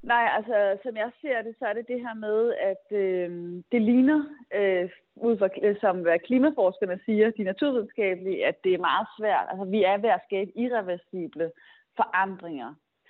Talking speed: 170 wpm